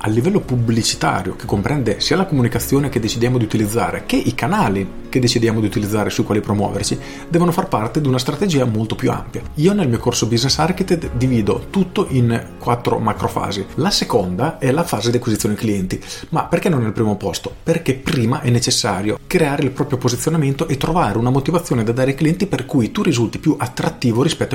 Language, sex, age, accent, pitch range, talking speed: Italian, male, 40-59, native, 105-140 Hz, 195 wpm